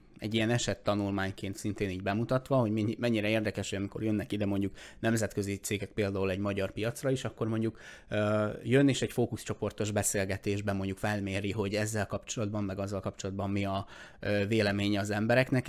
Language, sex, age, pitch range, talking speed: Hungarian, male, 20-39, 100-115 Hz, 160 wpm